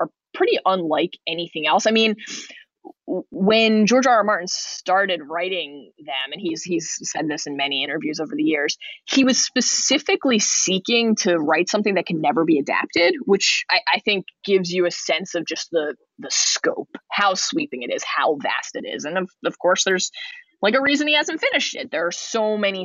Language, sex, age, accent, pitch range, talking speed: English, female, 20-39, American, 165-230 Hz, 195 wpm